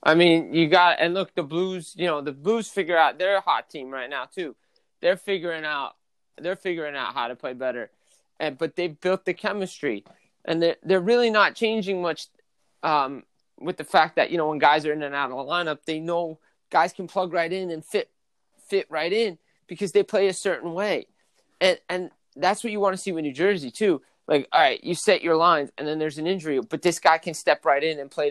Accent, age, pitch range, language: American, 30-49, 160-200 Hz, English